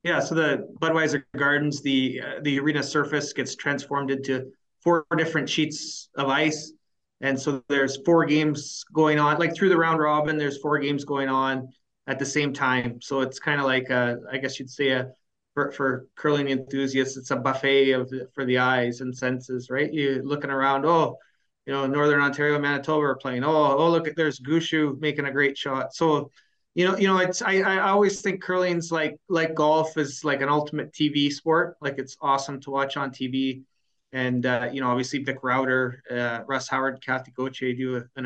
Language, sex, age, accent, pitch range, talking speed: English, male, 30-49, American, 130-150 Hz, 200 wpm